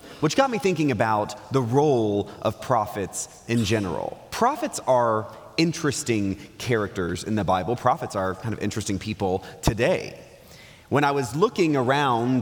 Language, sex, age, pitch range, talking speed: English, male, 30-49, 110-155 Hz, 145 wpm